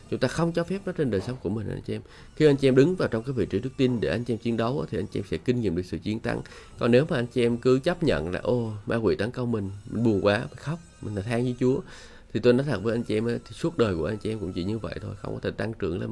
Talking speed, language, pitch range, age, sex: 355 wpm, Vietnamese, 100-125 Hz, 20-39, male